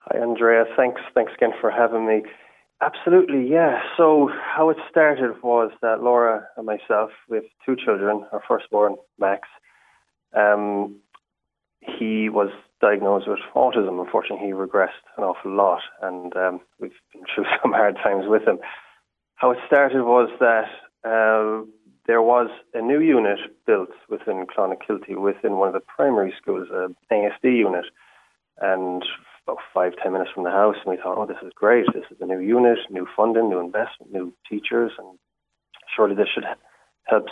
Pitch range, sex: 100-120 Hz, male